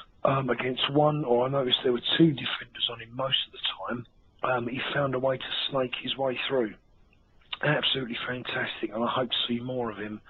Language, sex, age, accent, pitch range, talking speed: English, male, 40-59, British, 120-140 Hz, 210 wpm